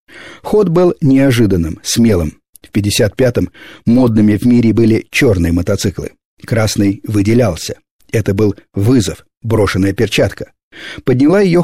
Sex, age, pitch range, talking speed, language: male, 50-69, 100-125 Hz, 110 wpm, Russian